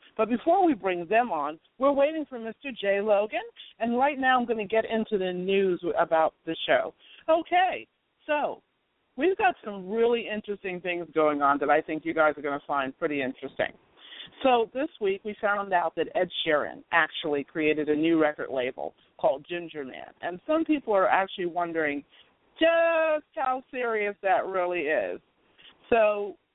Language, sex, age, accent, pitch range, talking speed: English, female, 50-69, American, 165-230 Hz, 175 wpm